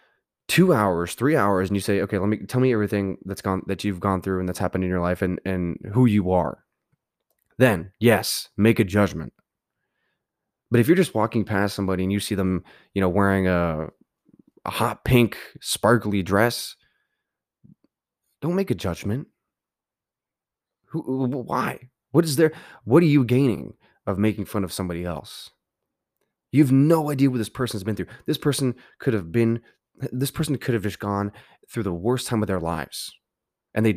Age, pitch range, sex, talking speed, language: 20-39, 95-135 Hz, male, 185 wpm, English